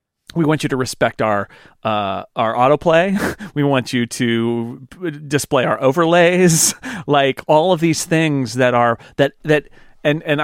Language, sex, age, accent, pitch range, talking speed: English, male, 40-59, American, 125-165 Hz, 160 wpm